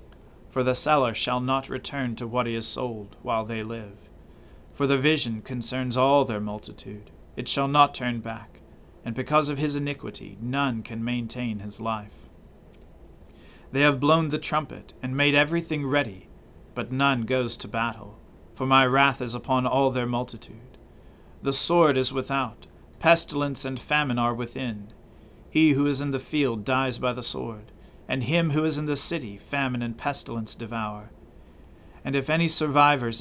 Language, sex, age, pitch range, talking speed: English, male, 40-59, 110-140 Hz, 165 wpm